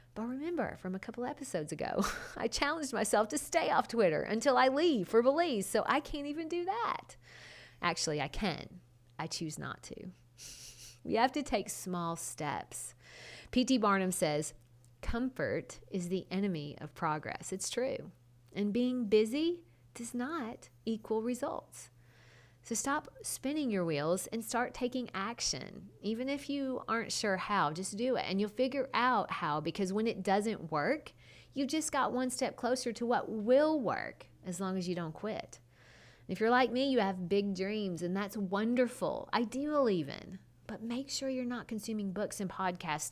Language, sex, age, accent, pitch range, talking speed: English, female, 40-59, American, 175-250 Hz, 170 wpm